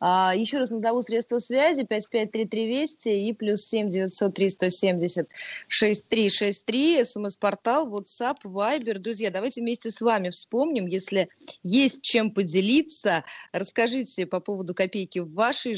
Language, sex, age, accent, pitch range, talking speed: Russian, female, 20-39, native, 185-225 Hz, 115 wpm